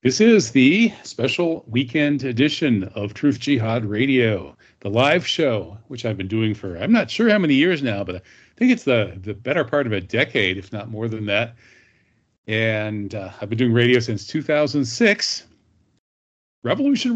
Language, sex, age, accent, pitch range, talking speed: English, male, 40-59, American, 105-140 Hz, 175 wpm